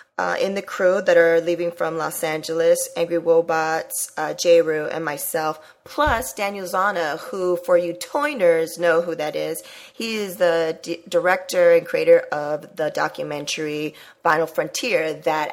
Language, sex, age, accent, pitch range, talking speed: English, female, 20-39, American, 165-210 Hz, 160 wpm